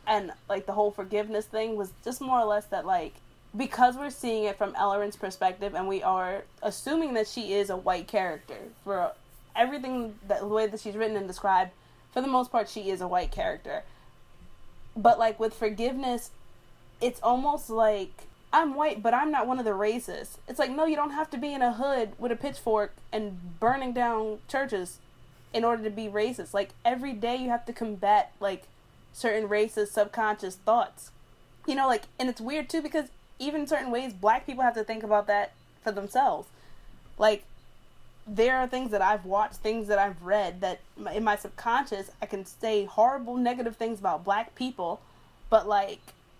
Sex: female